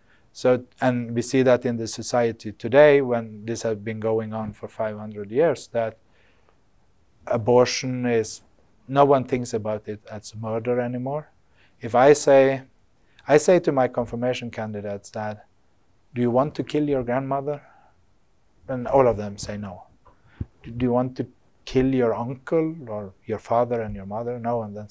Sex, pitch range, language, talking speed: male, 110-135 Hz, English, 165 wpm